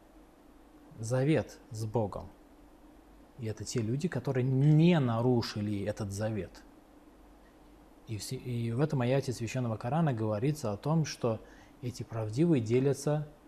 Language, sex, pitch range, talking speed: Russian, male, 110-150 Hz, 120 wpm